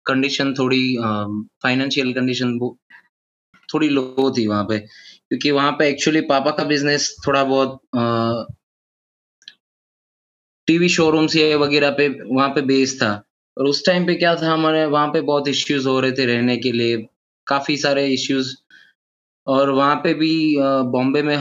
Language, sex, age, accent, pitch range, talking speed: English, male, 20-39, Indian, 130-160 Hz, 150 wpm